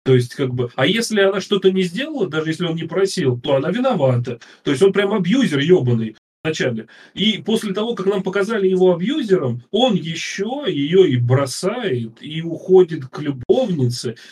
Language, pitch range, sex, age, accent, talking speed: Russian, 140-190 Hz, male, 30-49, native, 175 wpm